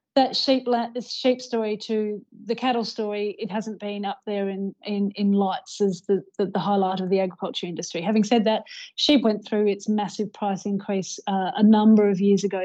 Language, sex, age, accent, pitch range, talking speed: English, female, 30-49, Australian, 200-225 Hz, 205 wpm